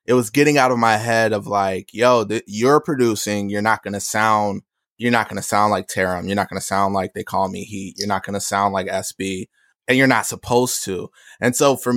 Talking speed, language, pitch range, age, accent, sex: 225 wpm, English, 105-120 Hz, 20-39, American, male